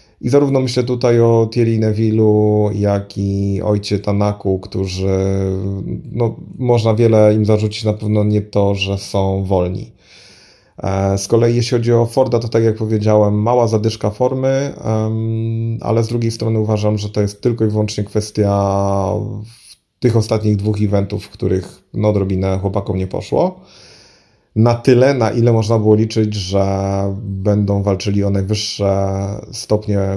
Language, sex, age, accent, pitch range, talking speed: Polish, male, 30-49, native, 100-115 Hz, 145 wpm